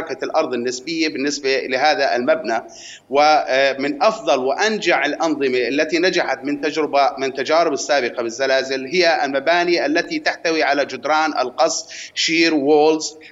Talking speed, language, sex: 115 wpm, Arabic, male